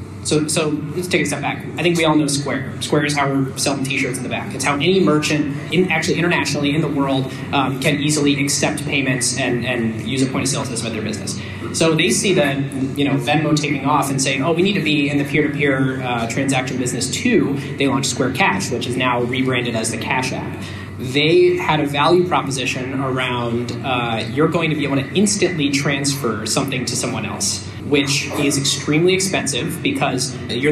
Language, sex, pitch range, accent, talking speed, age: English, male, 130-150 Hz, American, 205 wpm, 20-39